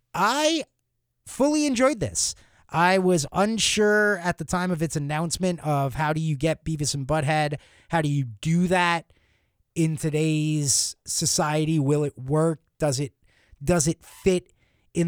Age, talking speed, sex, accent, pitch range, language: 30-49, 150 wpm, male, American, 145-185 Hz, English